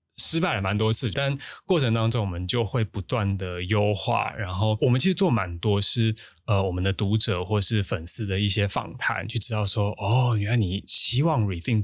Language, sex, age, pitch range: Chinese, male, 20-39, 100-115 Hz